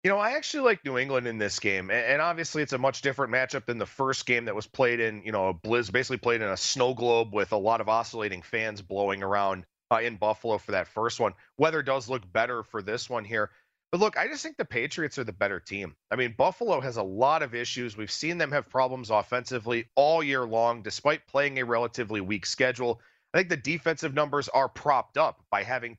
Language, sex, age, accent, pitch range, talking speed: English, male, 40-59, American, 115-155 Hz, 235 wpm